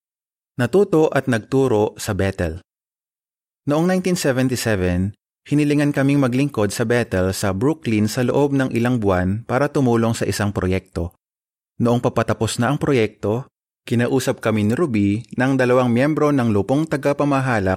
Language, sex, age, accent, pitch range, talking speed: Filipino, male, 30-49, native, 105-135 Hz, 130 wpm